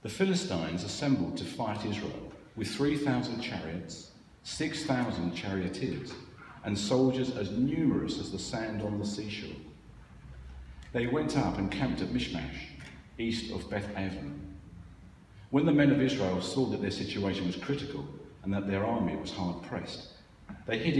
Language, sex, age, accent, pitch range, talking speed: English, male, 50-69, British, 95-130 Hz, 145 wpm